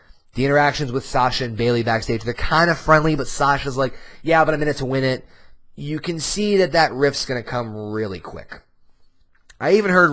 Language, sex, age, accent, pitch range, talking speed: English, male, 30-49, American, 120-170 Hz, 215 wpm